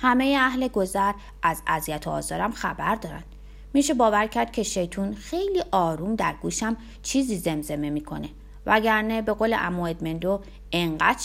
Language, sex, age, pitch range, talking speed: Persian, female, 30-49, 165-250 Hz, 135 wpm